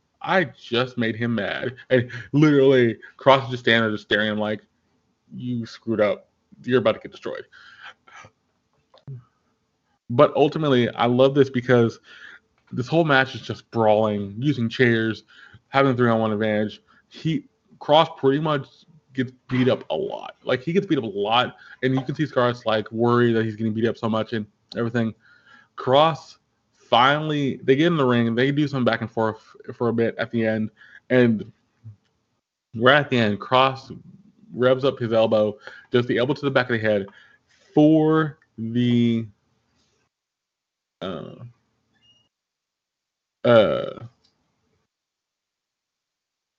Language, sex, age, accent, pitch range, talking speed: English, male, 20-39, American, 115-135 Hz, 150 wpm